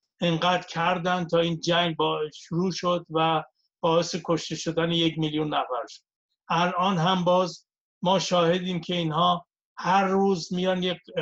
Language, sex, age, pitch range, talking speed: Persian, male, 60-79, 160-180 Hz, 140 wpm